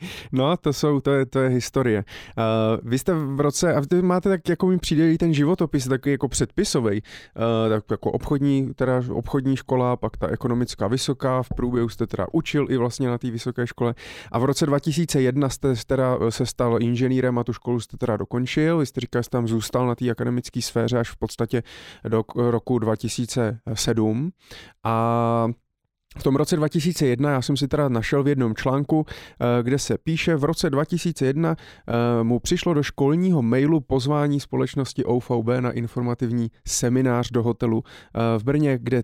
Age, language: 30-49, Czech